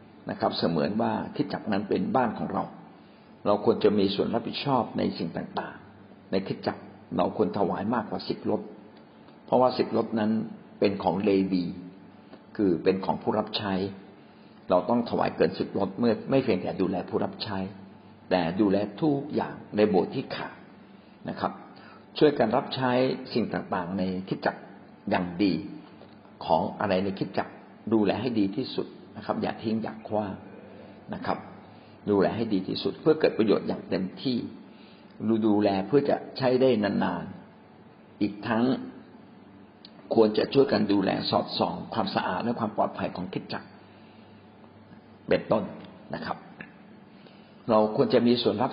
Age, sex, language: 60-79, male, Thai